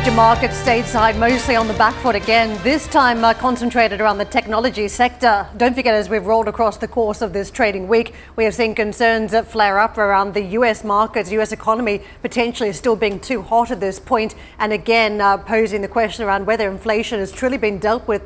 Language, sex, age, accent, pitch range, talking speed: English, female, 30-49, Australian, 205-230 Hz, 205 wpm